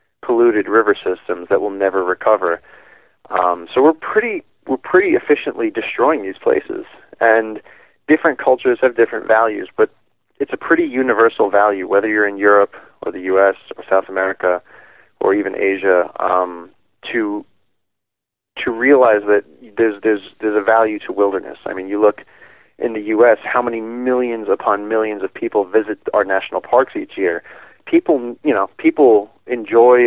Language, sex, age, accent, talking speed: English, male, 30-49, American, 160 wpm